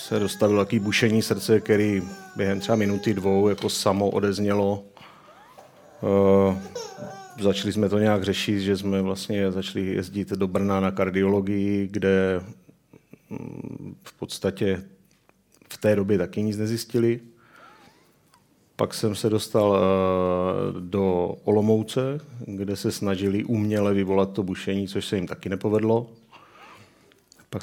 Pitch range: 95-105 Hz